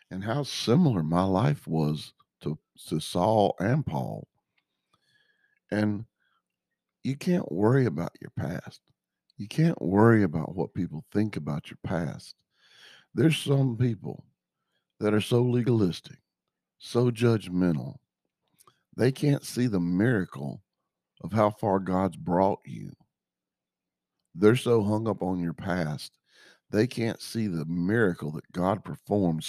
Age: 50-69